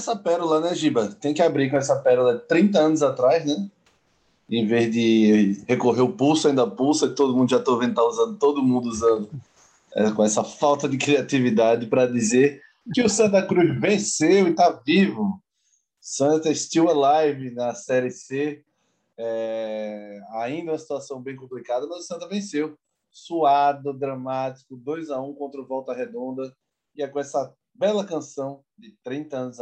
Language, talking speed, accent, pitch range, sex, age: Portuguese, 170 wpm, Brazilian, 125-155 Hz, male, 20-39